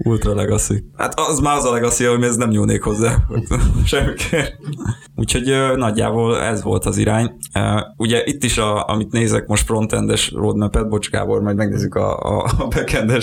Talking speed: 170 wpm